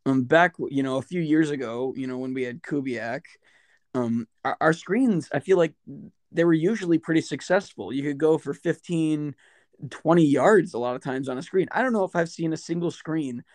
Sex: male